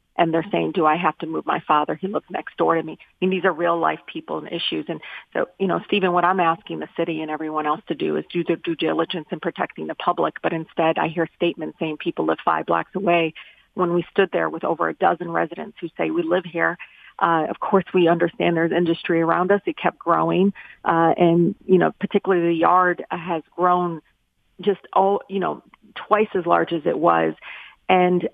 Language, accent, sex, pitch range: English, American, female, 170-200 Hz